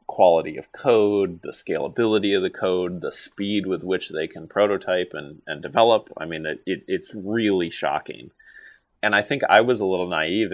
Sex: male